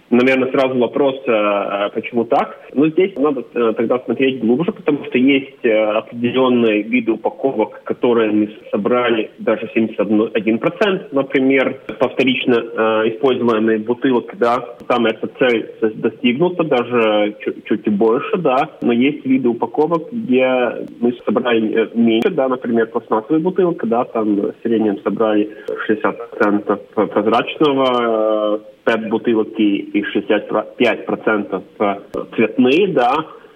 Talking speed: 120 wpm